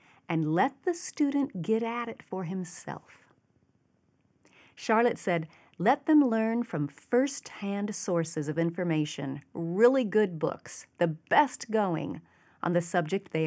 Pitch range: 160-240 Hz